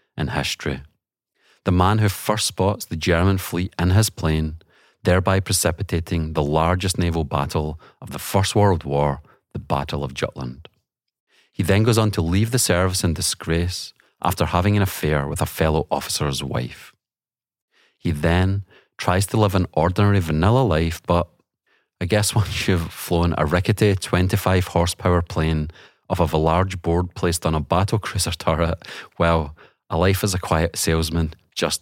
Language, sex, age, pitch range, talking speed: English, male, 30-49, 80-100 Hz, 160 wpm